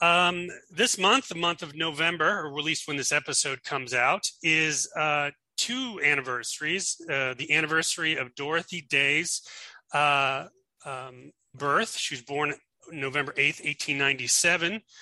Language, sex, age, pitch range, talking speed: English, male, 30-49, 140-175 Hz, 135 wpm